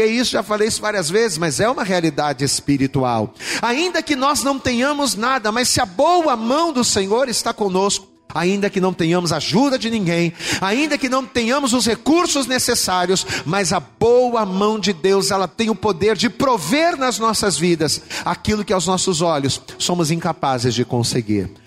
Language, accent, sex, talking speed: Portuguese, Brazilian, male, 175 wpm